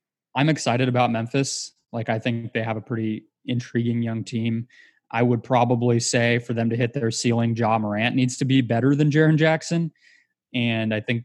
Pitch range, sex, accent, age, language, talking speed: 115-135 Hz, male, American, 20-39, English, 190 wpm